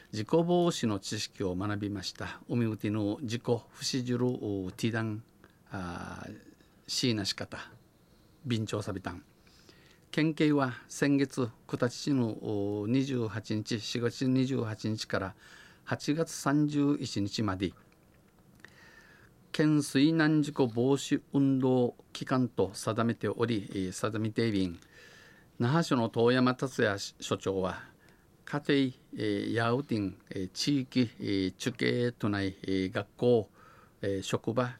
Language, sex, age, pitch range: Japanese, male, 50-69, 105-135 Hz